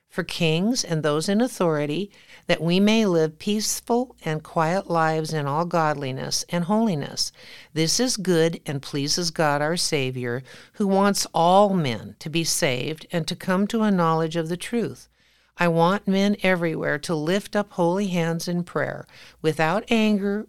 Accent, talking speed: American, 165 wpm